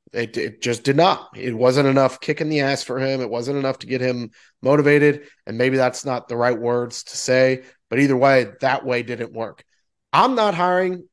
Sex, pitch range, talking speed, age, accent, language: male, 125-150 Hz, 210 wpm, 30-49, American, English